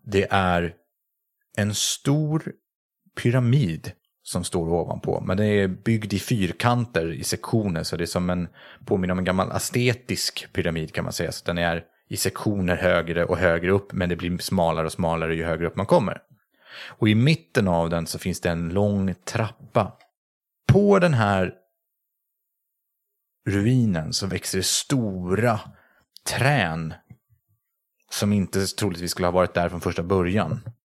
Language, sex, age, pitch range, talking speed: Swedish, male, 30-49, 90-125 Hz, 155 wpm